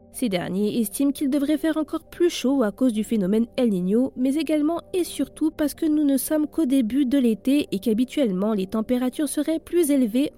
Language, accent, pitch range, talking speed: French, French, 215-295 Hz, 205 wpm